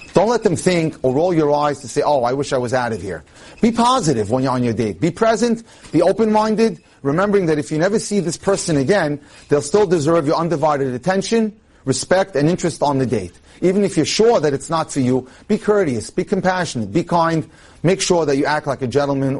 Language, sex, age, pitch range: English, male, 30-49, 130-180 Hz